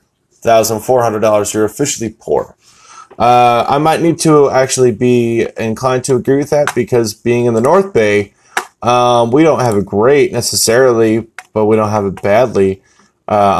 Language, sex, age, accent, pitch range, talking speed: English, male, 20-39, American, 95-115 Hz, 170 wpm